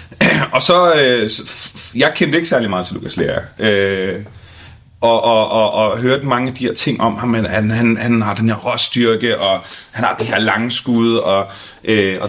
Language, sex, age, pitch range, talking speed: Danish, male, 30-49, 110-125 Hz, 180 wpm